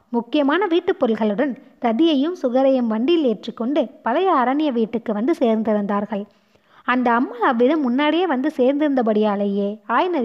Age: 20-39